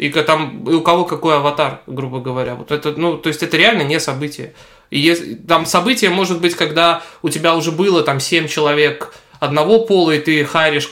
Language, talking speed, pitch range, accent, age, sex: Russian, 205 wpm, 135-160 Hz, native, 20-39, male